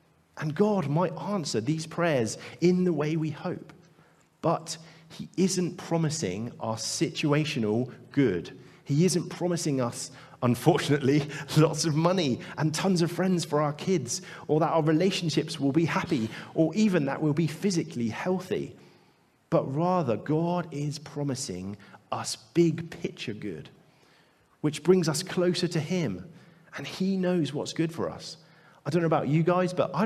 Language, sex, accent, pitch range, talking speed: English, male, British, 145-175 Hz, 155 wpm